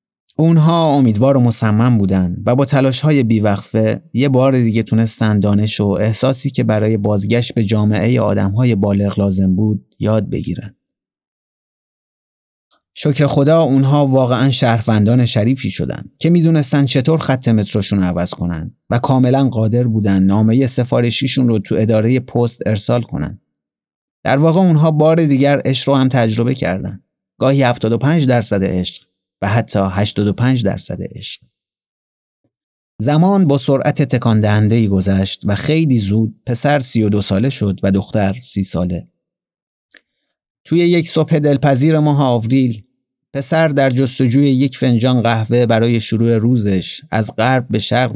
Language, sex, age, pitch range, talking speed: Persian, male, 30-49, 105-135 Hz, 140 wpm